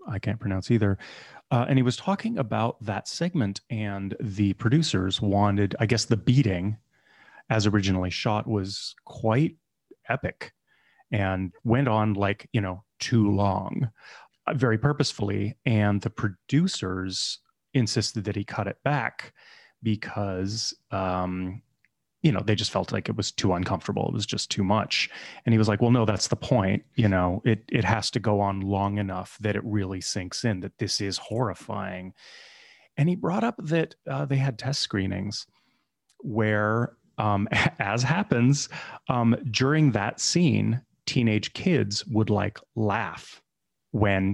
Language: English